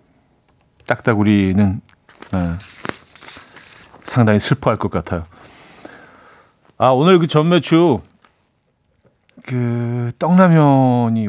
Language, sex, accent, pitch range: Korean, male, native, 100-150 Hz